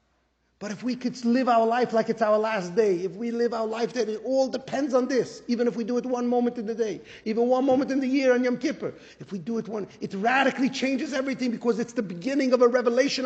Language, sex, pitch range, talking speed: English, male, 235-285 Hz, 260 wpm